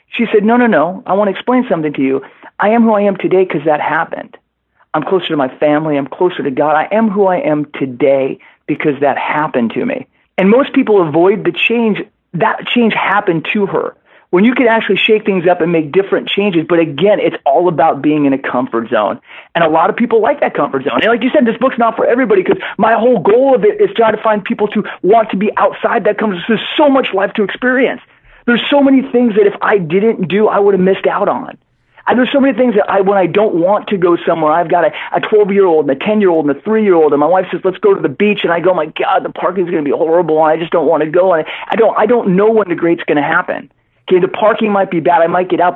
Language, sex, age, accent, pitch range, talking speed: English, male, 40-59, American, 165-225 Hz, 270 wpm